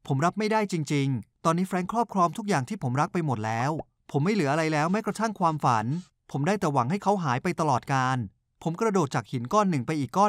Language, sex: Thai, male